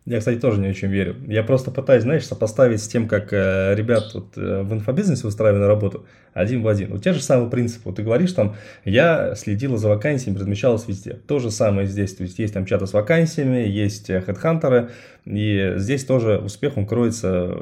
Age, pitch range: 20-39, 100-130 Hz